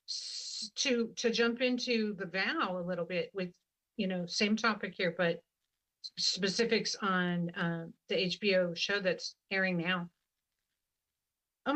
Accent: American